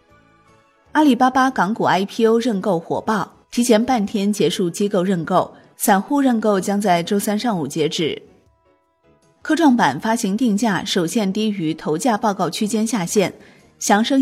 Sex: female